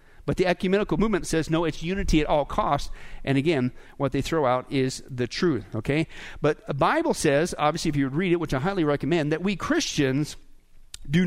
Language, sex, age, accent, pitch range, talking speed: English, male, 50-69, American, 140-205 Hz, 200 wpm